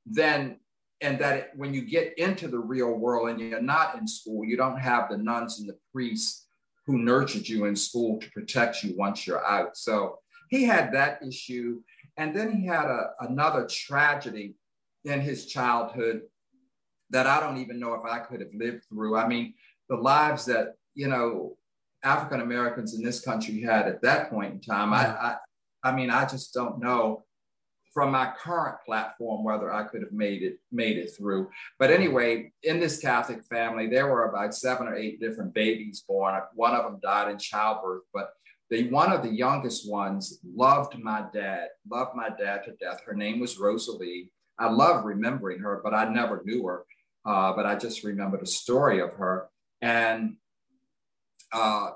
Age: 50-69